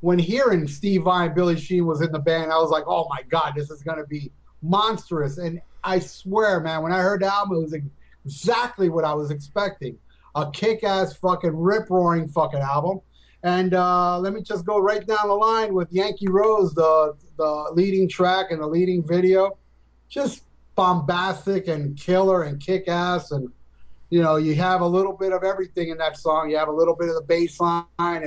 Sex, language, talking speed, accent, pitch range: male, English, 195 wpm, American, 150-185 Hz